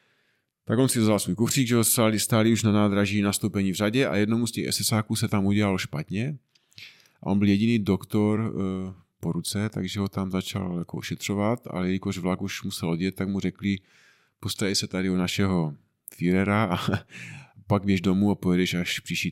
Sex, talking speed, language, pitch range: male, 185 wpm, Czech, 90-105 Hz